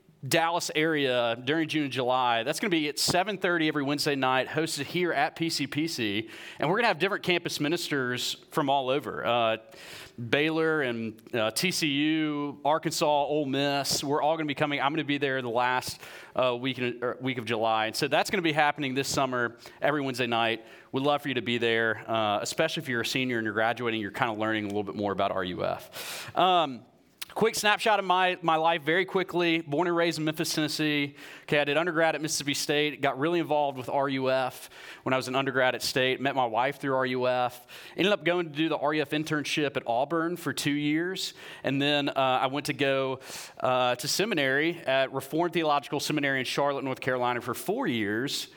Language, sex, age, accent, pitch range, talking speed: English, male, 30-49, American, 125-155 Hz, 200 wpm